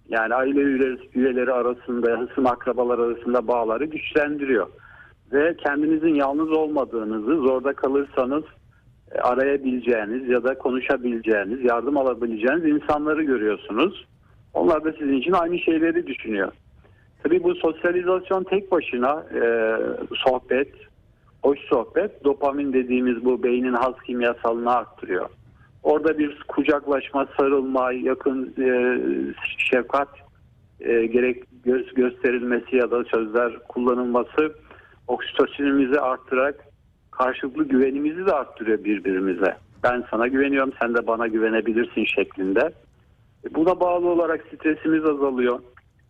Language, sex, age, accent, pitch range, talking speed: Turkish, male, 50-69, native, 120-150 Hz, 105 wpm